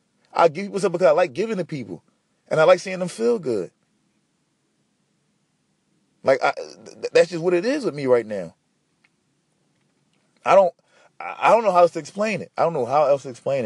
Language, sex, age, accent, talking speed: English, male, 20-39, American, 200 wpm